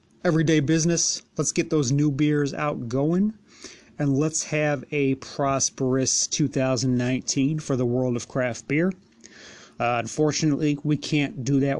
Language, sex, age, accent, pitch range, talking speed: English, male, 30-49, American, 115-145 Hz, 135 wpm